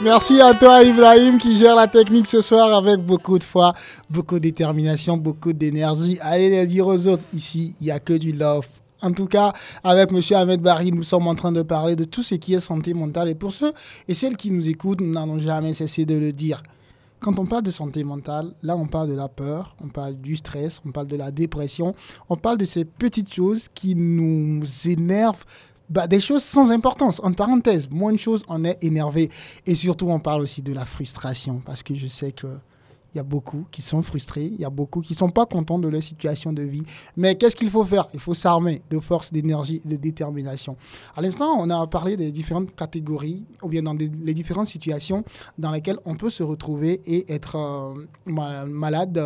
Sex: male